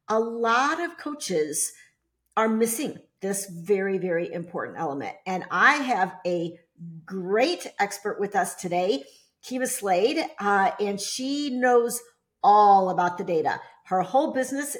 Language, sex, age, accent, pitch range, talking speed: English, female, 50-69, American, 190-255 Hz, 135 wpm